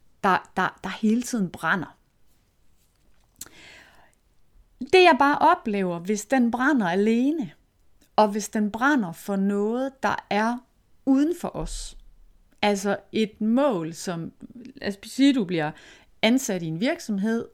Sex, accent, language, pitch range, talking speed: female, native, Danish, 200-275 Hz, 125 wpm